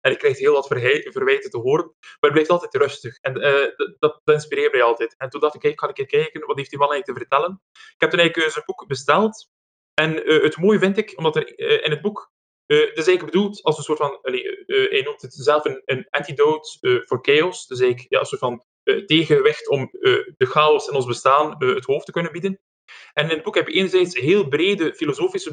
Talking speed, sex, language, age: 260 wpm, male, Dutch, 20-39